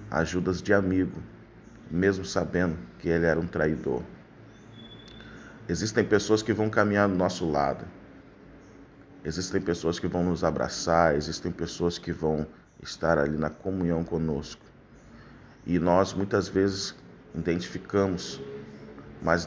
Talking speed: 120 wpm